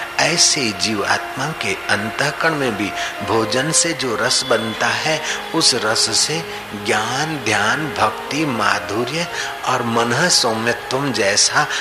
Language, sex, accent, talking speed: Hindi, male, native, 115 wpm